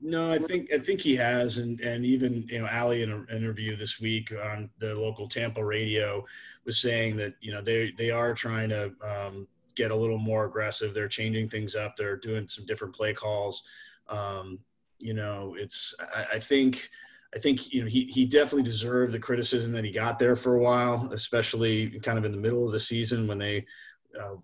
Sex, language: male, English